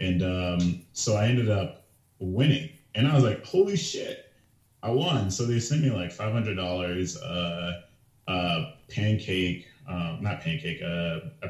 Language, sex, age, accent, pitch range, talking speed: English, male, 30-49, American, 90-120 Hz, 150 wpm